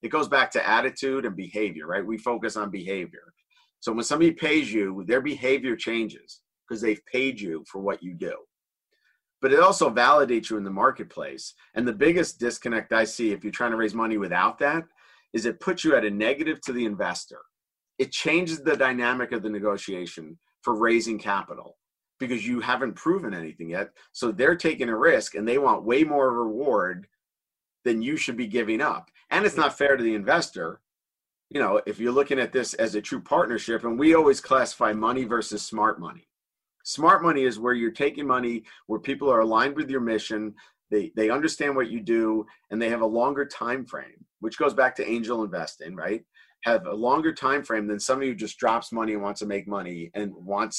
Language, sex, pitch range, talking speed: English, male, 105-135 Hz, 200 wpm